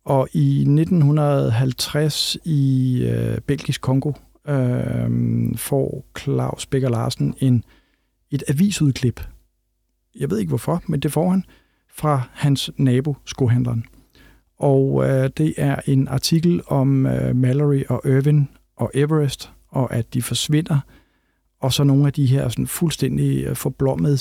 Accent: native